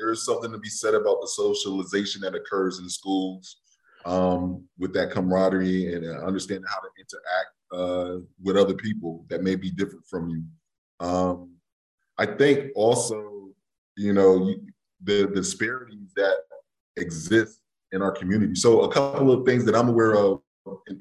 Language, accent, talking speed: English, American, 165 wpm